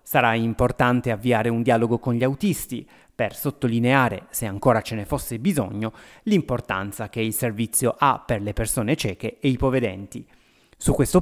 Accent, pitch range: native, 110-140 Hz